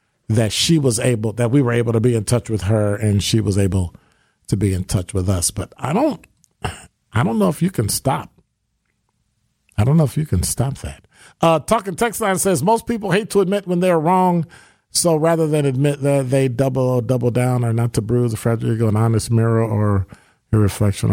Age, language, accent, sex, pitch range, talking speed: 50-69, English, American, male, 110-165 Hz, 220 wpm